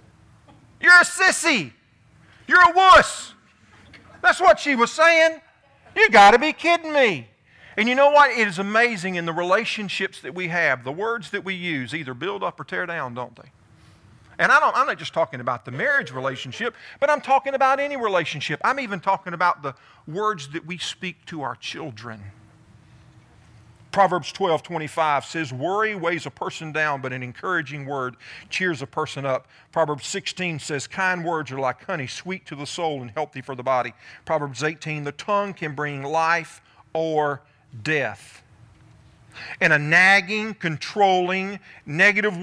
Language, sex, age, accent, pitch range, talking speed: English, male, 50-69, American, 135-200 Hz, 165 wpm